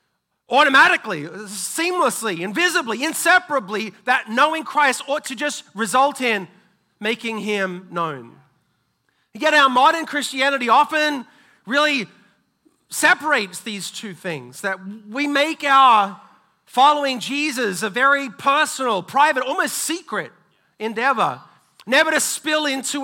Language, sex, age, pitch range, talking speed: English, male, 40-59, 190-275 Hz, 110 wpm